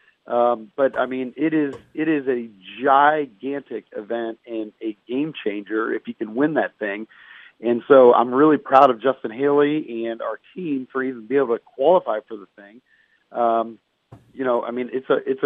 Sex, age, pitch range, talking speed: male, 40-59, 115-140 Hz, 190 wpm